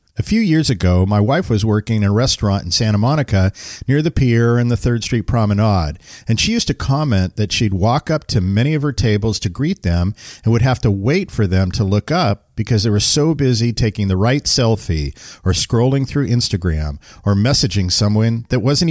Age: 50-69